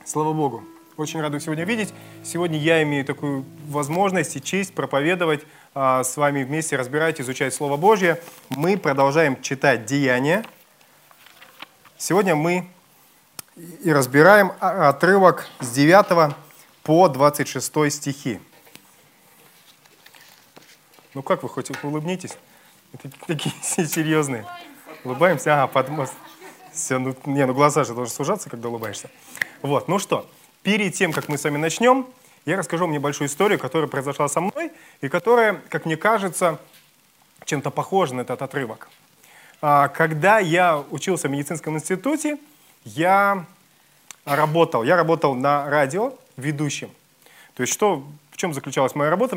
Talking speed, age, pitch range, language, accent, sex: 130 wpm, 20-39, 140-180 Hz, Russian, native, male